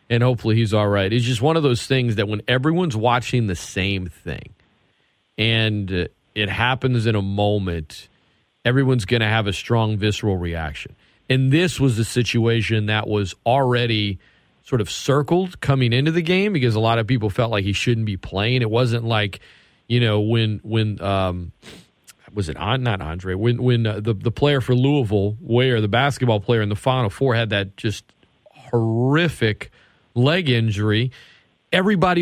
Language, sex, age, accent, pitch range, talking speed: English, male, 40-59, American, 110-135 Hz, 175 wpm